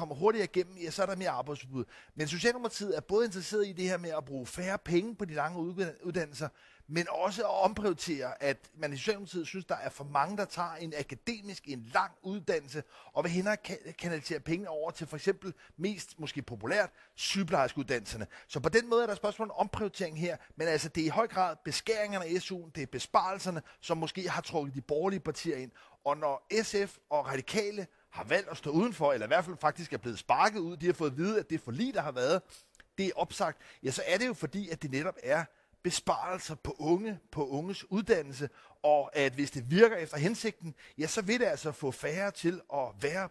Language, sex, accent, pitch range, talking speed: Danish, male, native, 150-195 Hz, 220 wpm